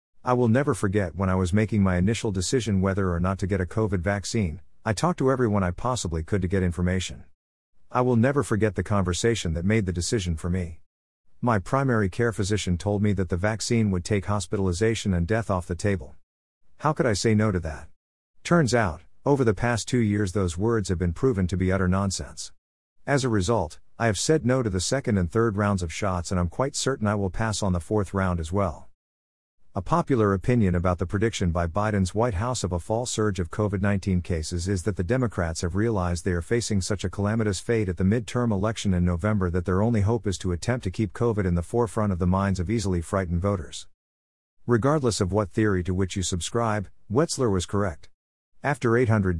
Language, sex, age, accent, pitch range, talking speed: English, male, 50-69, American, 90-110 Hz, 215 wpm